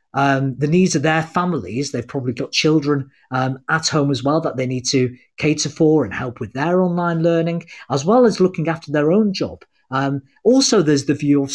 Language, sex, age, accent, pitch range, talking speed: English, male, 40-59, British, 125-180 Hz, 215 wpm